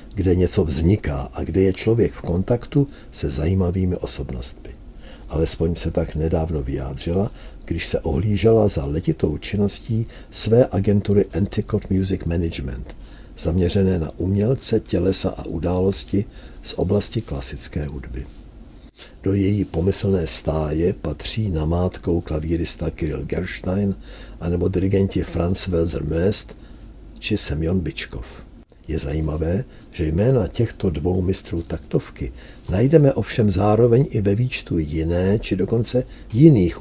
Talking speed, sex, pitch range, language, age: 115 wpm, male, 80-100 Hz, Czech, 60-79